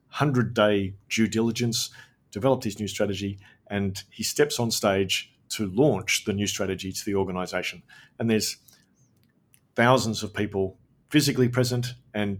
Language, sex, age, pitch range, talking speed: English, male, 40-59, 100-125 Hz, 140 wpm